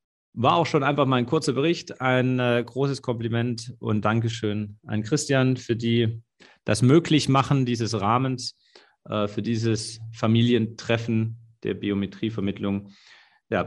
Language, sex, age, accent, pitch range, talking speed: German, male, 40-59, German, 105-130 Hz, 125 wpm